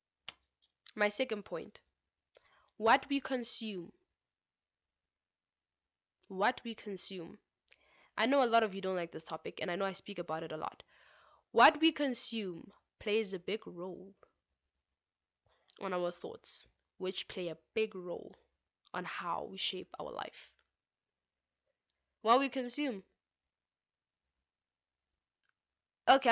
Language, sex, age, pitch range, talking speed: English, female, 10-29, 175-240 Hz, 120 wpm